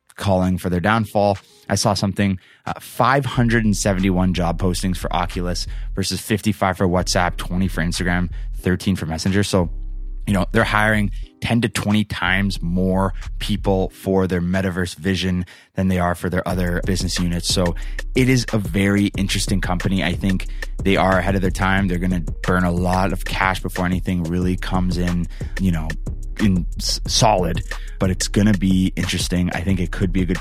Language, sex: English, male